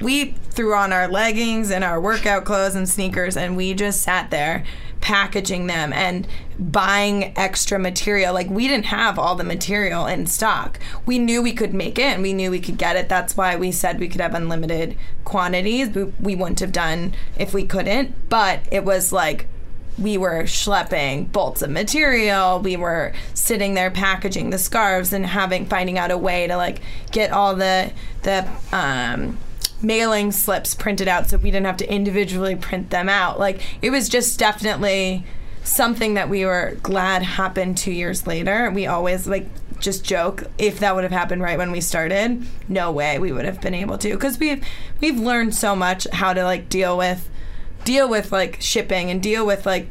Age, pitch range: 20-39, 180-205 Hz